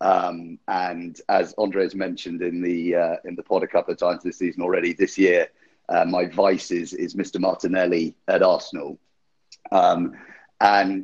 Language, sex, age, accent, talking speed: English, male, 30-49, British, 170 wpm